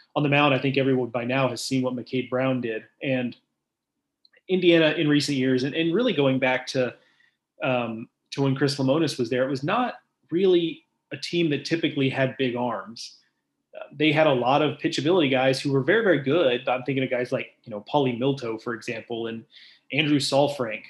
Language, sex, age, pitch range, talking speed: English, male, 30-49, 125-145 Hz, 200 wpm